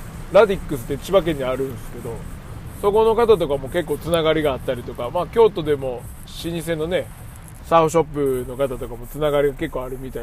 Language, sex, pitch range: Japanese, male, 130-180 Hz